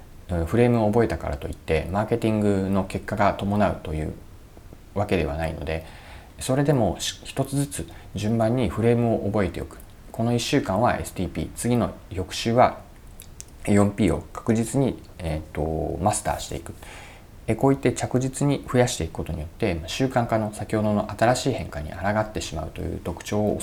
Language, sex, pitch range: Japanese, male, 85-110 Hz